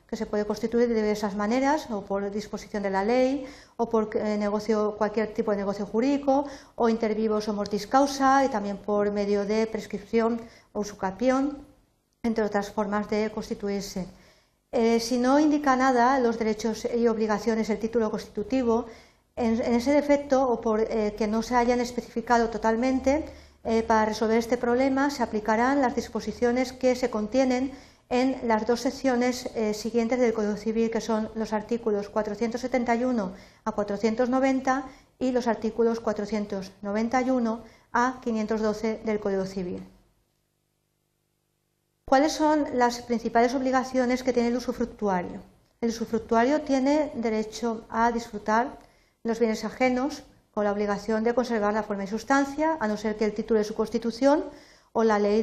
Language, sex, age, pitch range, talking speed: Spanish, female, 50-69, 215-250 Hz, 150 wpm